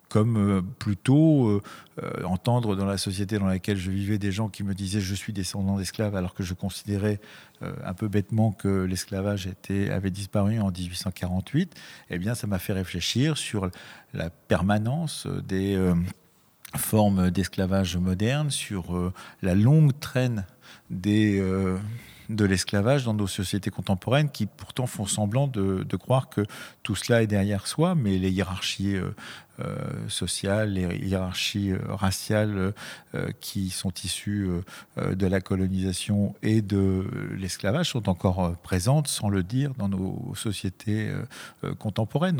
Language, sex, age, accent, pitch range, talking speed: French, male, 50-69, French, 95-110 Hz, 145 wpm